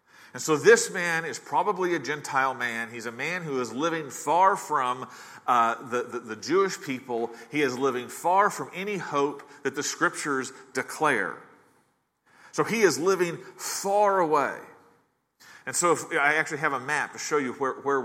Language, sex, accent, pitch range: English, male, American, 130-175 Hz